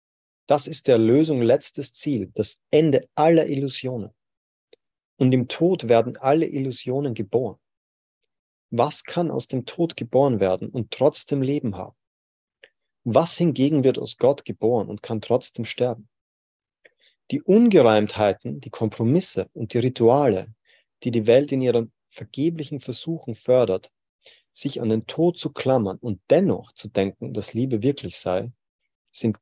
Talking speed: 140 wpm